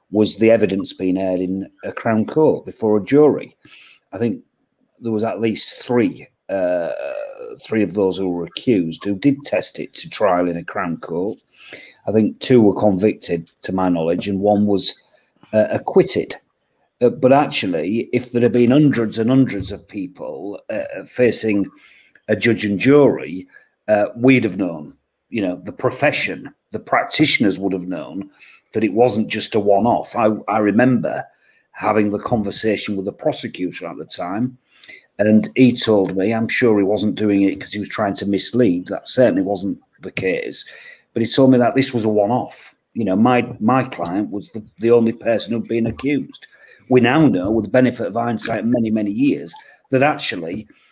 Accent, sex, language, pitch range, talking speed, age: British, male, English, 100-125 Hz, 180 wpm, 40-59